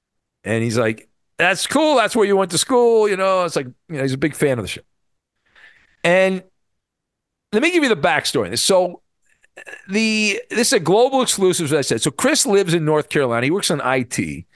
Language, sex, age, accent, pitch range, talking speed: English, male, 50-69, American, 130-200 Hz, 215 wpm